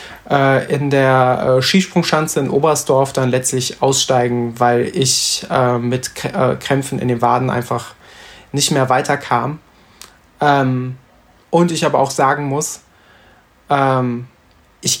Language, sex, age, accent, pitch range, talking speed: German, male, 20-39, German, 130-145 Hz, 105 wpm